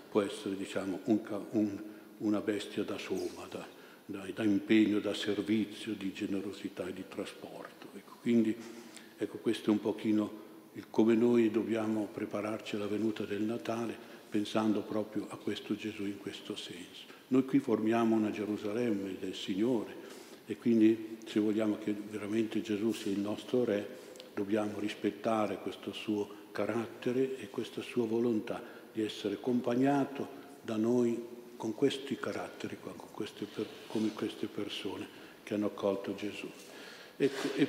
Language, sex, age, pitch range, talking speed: Italian, male, 60-79, 105-120 Hz, 140 wpm